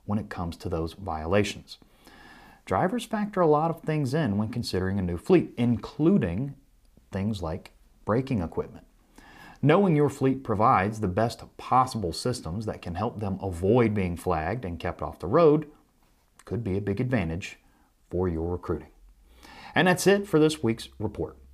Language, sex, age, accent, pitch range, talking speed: English, male, 30-49, American, 90-130 Hz, 160 wpm